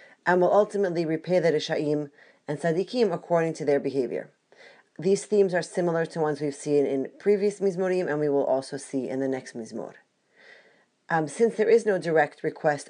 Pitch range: 150-180 Hz